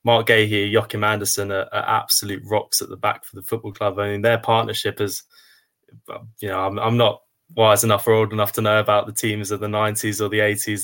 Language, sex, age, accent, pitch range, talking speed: English, male, 20-39, British, 105-110 Hz, 235 wpm